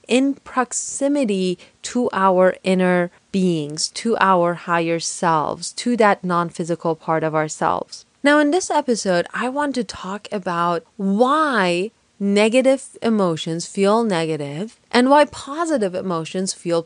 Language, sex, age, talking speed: English, female, 30-49, 125 wpm